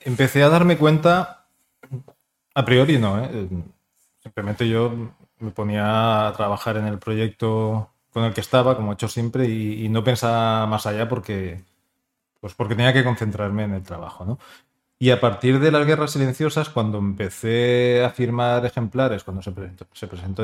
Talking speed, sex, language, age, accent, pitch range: 170 wpm, male, Spanish, 20-39, Spanish, 110-130 Hz